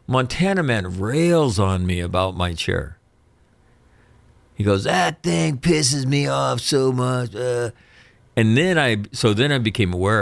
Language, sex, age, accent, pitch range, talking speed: English, male, 50-69, American, 85-115 Hz, 155 wpm